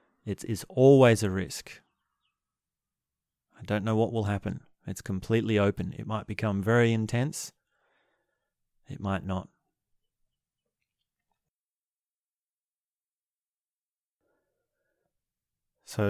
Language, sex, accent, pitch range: English, male, Australian, 95-120 Hz